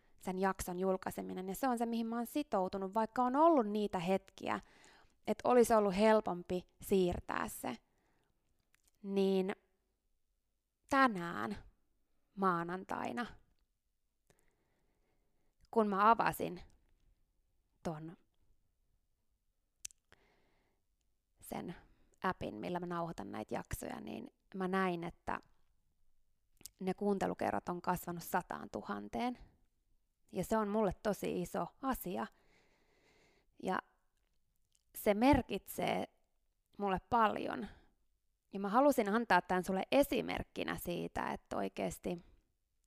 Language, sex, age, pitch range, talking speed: Finnish, female, 20-39, 170-220 Hz, 95 wpm